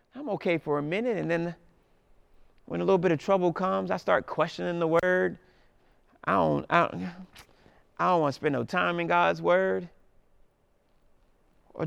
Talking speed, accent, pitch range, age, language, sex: 170 wpm, American, 150-200 Hz, 30-49, English, male